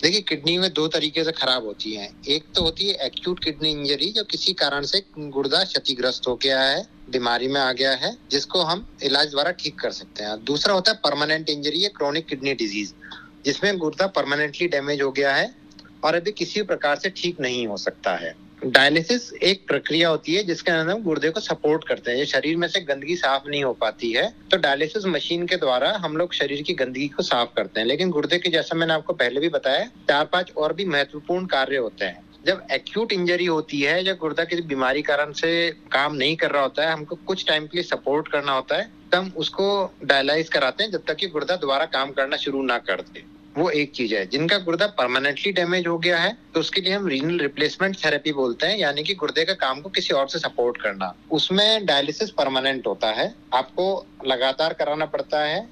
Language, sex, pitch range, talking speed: English, male, 140-175 Hz, 185 wpm